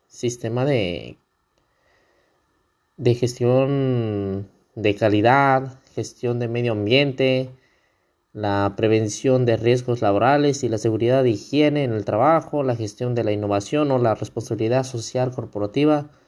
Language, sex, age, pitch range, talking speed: Spanish, male, 20-39, 115-145 Hz, 120 wpm